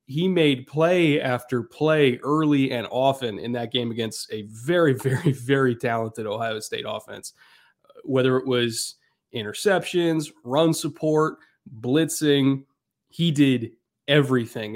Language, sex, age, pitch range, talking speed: English, male, 30-49, 120-140 Hz, 120 wpm